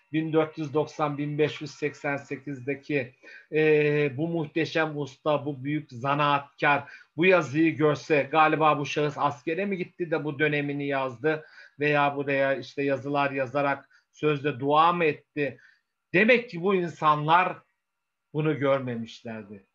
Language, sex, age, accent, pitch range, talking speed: Turkish, male, 50-69, native, 135-155 Hz, 105 wpm